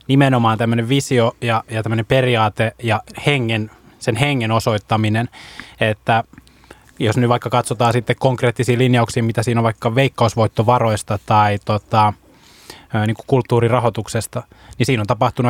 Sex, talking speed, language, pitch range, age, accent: male, 115 wpm, Finnish, 110-125 Hz, 20-39, native